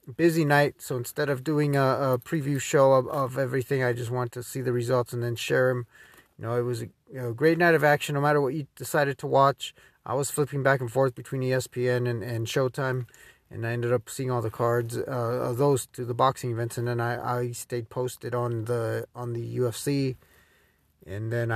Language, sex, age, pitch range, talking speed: English, male, 30-49, 115-145 Hz, 230 wpm